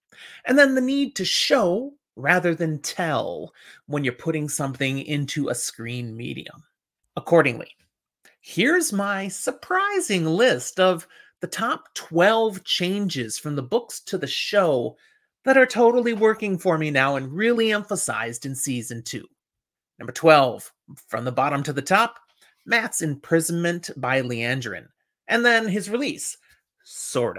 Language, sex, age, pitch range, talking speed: English, male, 30-49, 140-220 Hz, 140 wpm